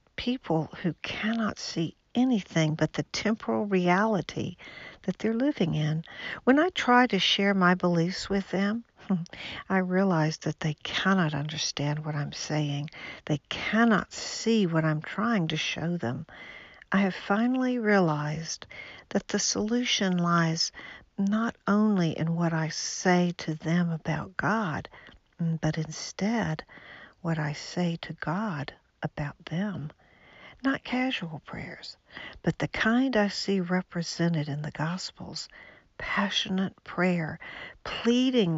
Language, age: English, 60-79